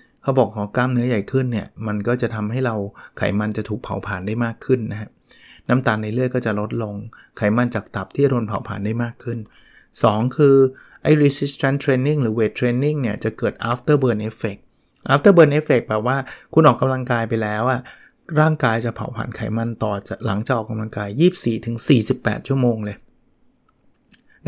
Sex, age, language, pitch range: male, 20-39, Thai, 105-130 Hz